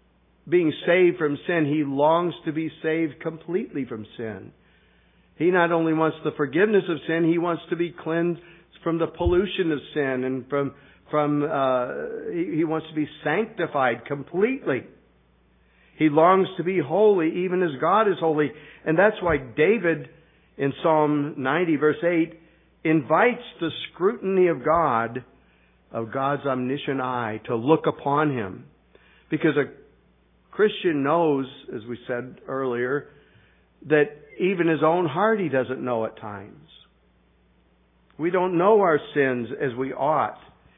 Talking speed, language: 145 wpm, English